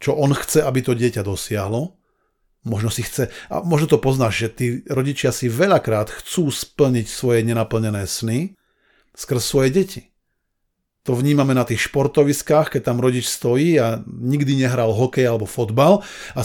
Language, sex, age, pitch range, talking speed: Slovak, male, 40-59, 115-145 Hz, 155 wpm